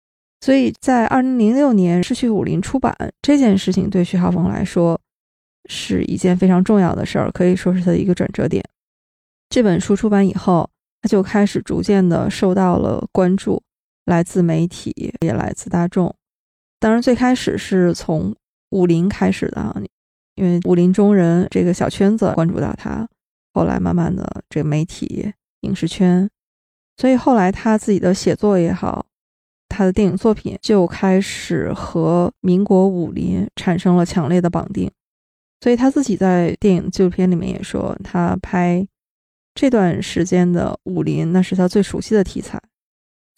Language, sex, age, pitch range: Chinese, female, 20-39, 180-210 Hz